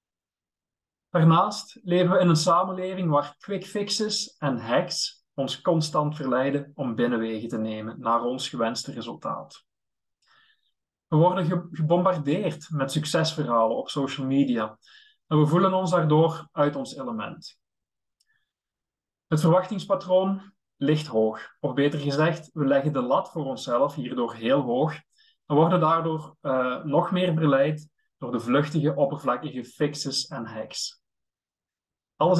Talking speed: 130 wpm